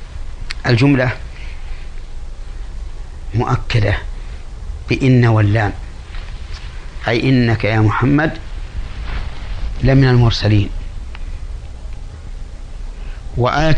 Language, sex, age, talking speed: Arabic, male, 50-69, 50 wpm